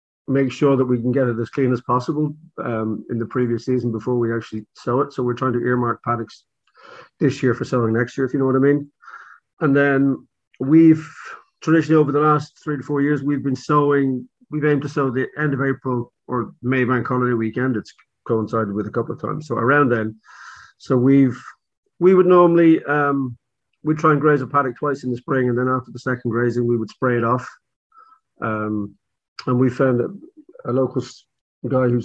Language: English